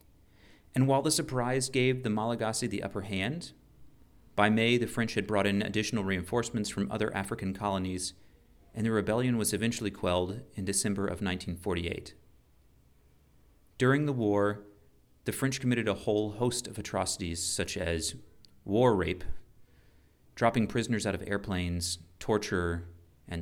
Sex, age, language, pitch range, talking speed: male, 30-49, English, 85-105 Hz, 140 wpm